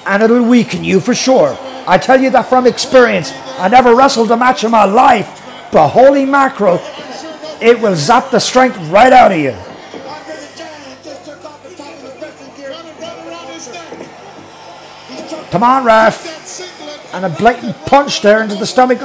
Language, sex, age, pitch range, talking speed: English, male, 50-69, 210-260 Hz, 140 wpm